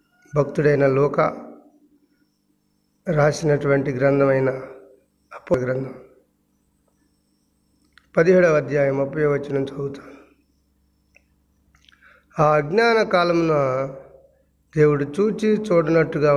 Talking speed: 60 wpm